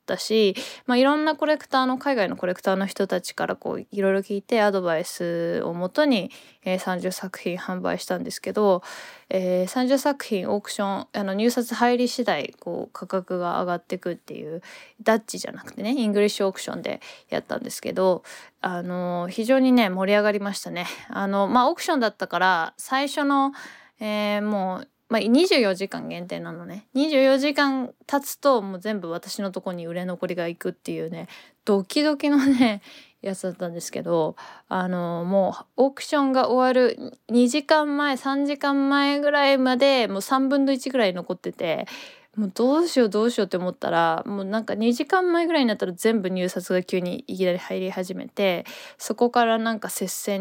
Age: 20-39